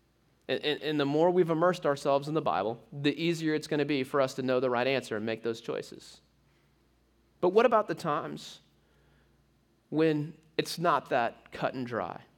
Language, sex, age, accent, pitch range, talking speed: English, male, 30-49, American, 125-165 Hz, 185 wpm